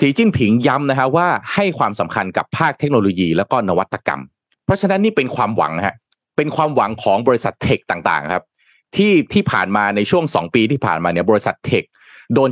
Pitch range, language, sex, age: 95-155 Hz, Thai, male, 30-49